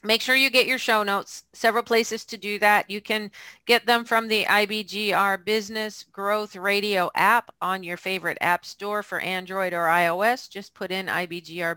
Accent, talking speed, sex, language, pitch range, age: American, 185 wpm, female, English, 175-220 Hz, 40-59